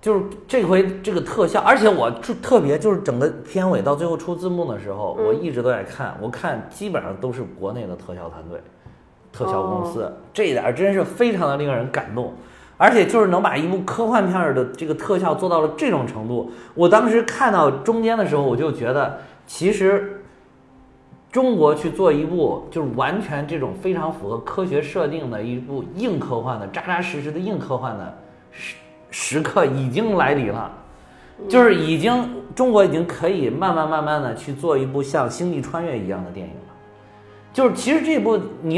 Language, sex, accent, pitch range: Chinese, male, native, 135-205 Hz